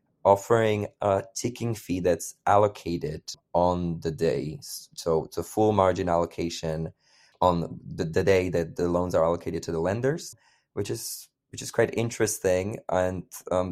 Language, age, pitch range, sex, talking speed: English, 20-39, 90-105 Hz, male, 155 wpm